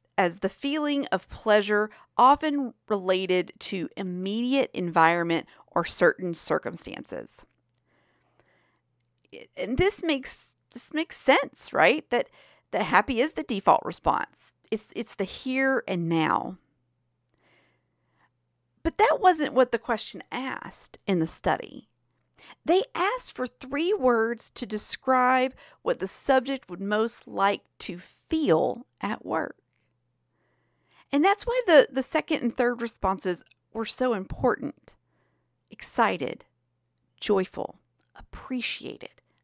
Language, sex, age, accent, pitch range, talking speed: English, female, 40-59, American, 185-280 Hz, 115 wpm